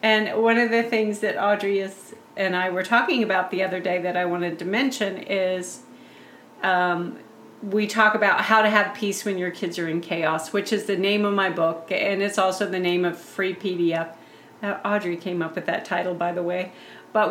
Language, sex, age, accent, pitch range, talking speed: English, female, 40-59, American, 190-225 Hz, 215 wpm